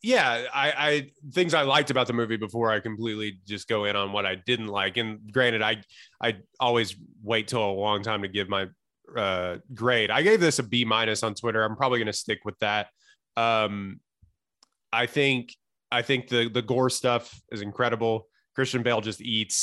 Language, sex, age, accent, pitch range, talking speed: English, male, 20-39, American, 110-130 Hz, 195 wpm